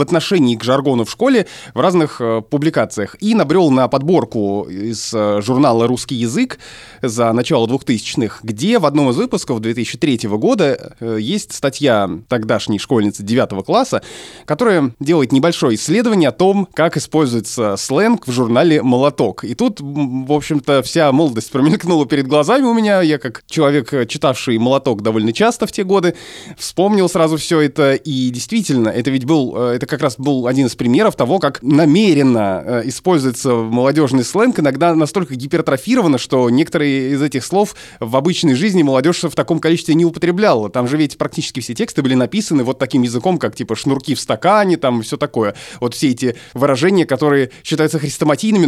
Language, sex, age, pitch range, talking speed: Russian, male, 20-39, 125-170 Hz, 160 wpm